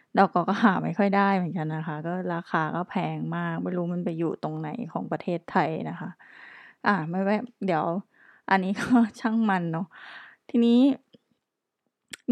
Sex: female